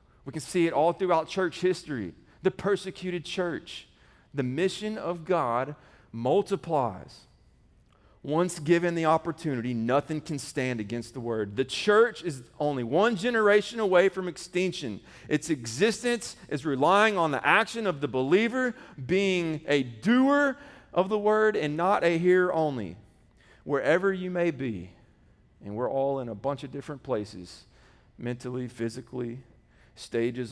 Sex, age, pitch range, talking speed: male, 40-59, 130-195 Hz, 140 wpm